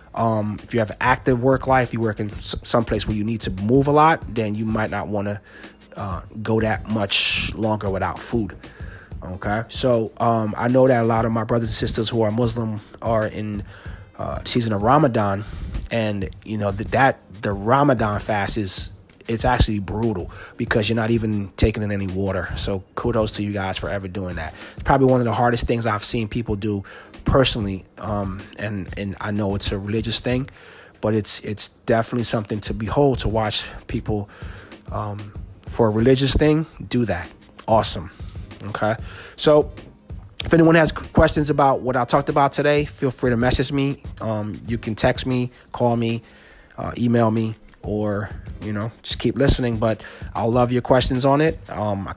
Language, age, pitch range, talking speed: English, 30-49, 100-120 Hz, 190 wpm